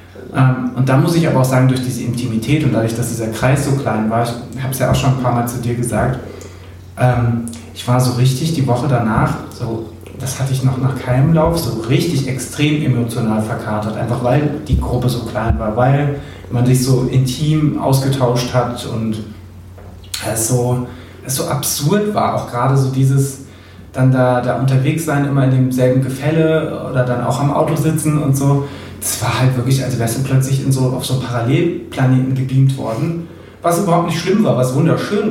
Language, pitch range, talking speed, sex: German, 115-140 Hz, 195 wpm, male